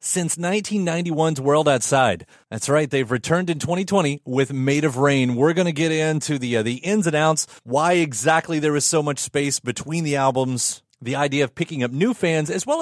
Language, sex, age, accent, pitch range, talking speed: English, male, 30-49, American, 125-170 Hz, 205 wpm